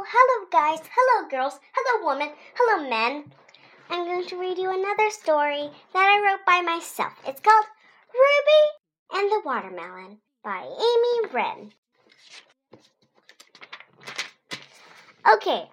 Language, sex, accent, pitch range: Chinese, male, American, 275-435 Hz